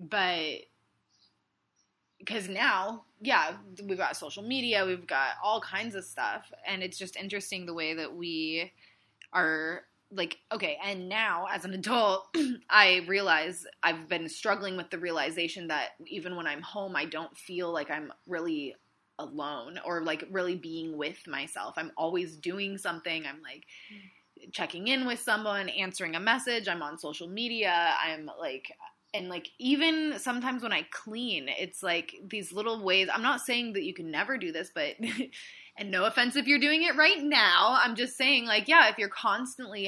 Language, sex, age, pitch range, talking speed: English, female, 20-39, 175-230 Hz, 170 wpm